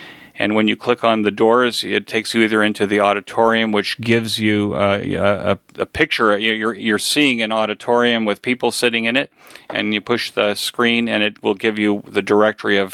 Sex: male